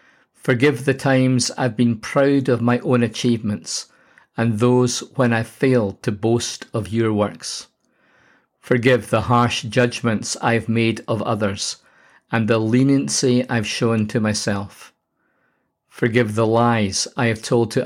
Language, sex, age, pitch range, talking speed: English, male, 50-69, 110-130 Hz, 140 wpm